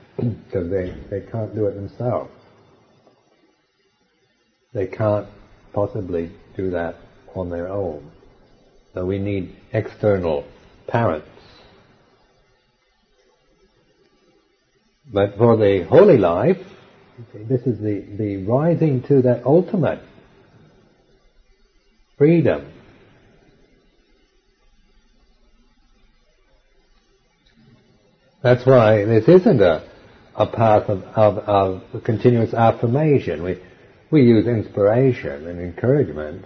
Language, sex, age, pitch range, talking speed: English, male, 60-79, 95-125 Hz, 85 wpm